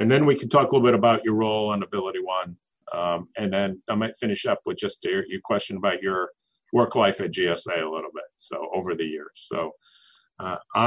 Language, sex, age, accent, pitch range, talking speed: English, male, 50-69, American, 95-115 Hz, 225 wpm